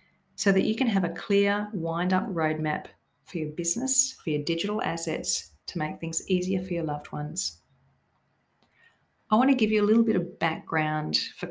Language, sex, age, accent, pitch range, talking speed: English, female, 40-59, Australian, 150-195 Hz, 180 wpm